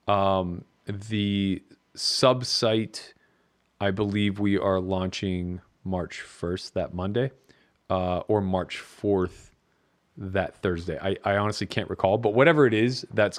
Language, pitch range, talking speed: English, 95-115 Hz, 125 wpm